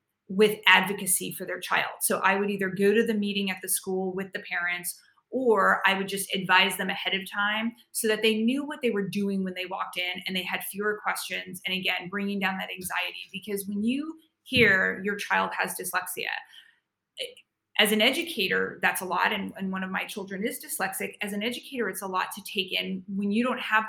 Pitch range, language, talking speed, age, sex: 185-220 Hz, English, 215 wpm, 30-49, female